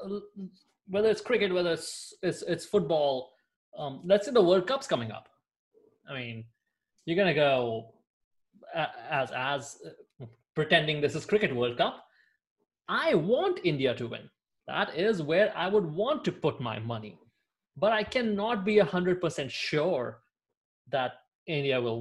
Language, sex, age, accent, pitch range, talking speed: English, male, 20-39, Indian, 130-205 Hz, 145 wpm